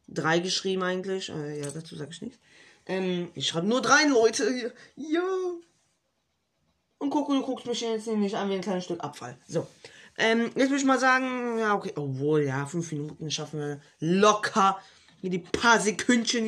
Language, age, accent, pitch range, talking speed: German, 20-39, German, 175-240 Hz, 180 wpm